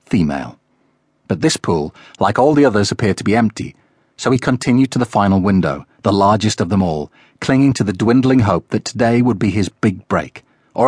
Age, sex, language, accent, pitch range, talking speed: 40-59, male, English, British, 95-120 Hz, 205 wpm